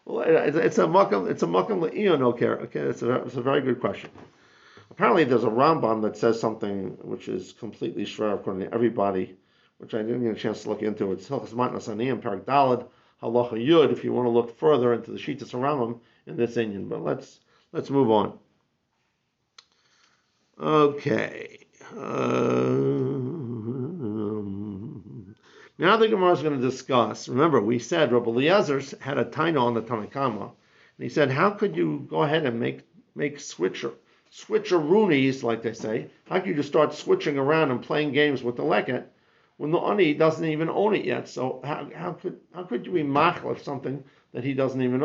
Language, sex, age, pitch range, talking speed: English, male, 50-69, 115-150 Hz, 175 wpm